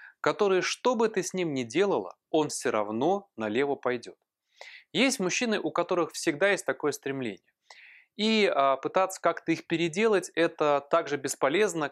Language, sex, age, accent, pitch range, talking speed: Russian, male, 20-39, native, 135-195 Hz, 145 wpm